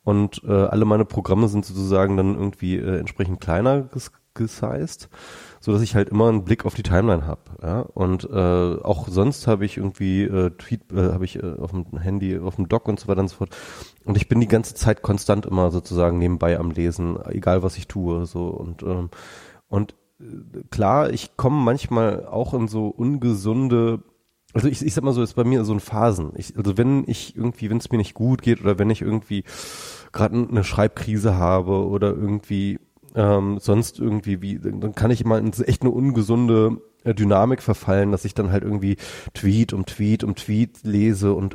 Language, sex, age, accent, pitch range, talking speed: German, male, 30-49, German, 95-115 Hz, 200 wpm